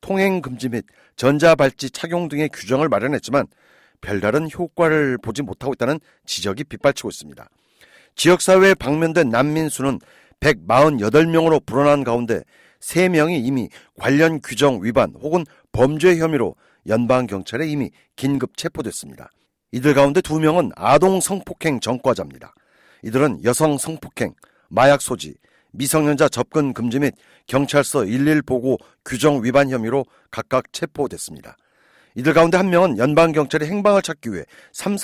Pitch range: 130-170 Hz